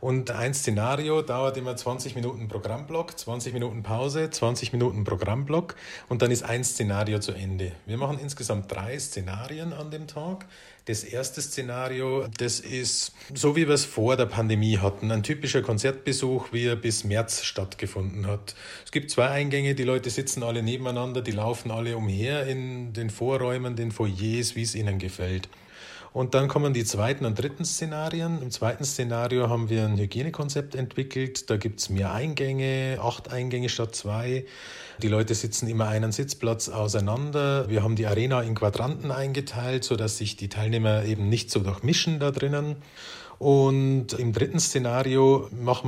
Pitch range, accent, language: 110-135 Hz, Austrian, German